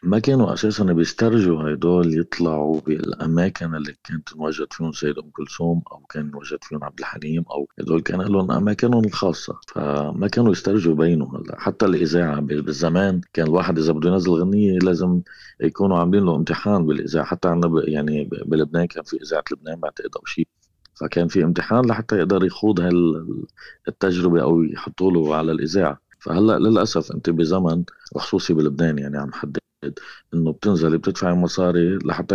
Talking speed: 145 wpm